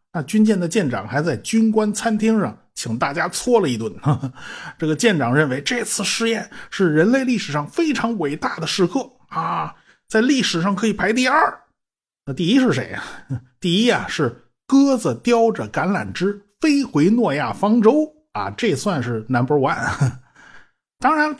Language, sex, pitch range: Chinese, male, 145-230 Hz